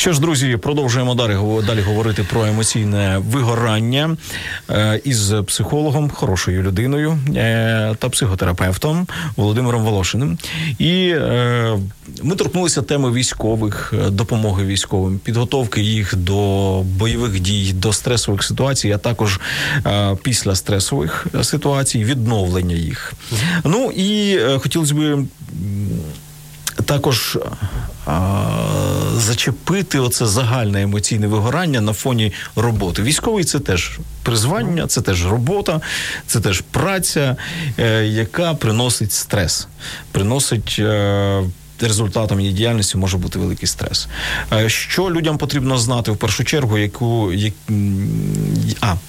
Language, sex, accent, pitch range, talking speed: Ukrainian, male, native, 100-145 Hz, 110 wpm